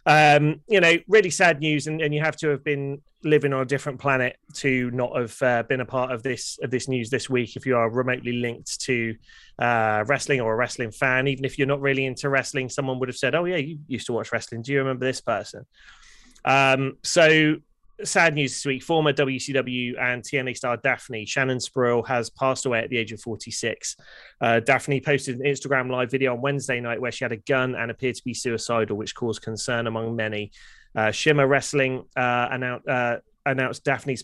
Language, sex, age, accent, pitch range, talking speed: English, male, 20-39, British, 120-140 Hz, 215 wpm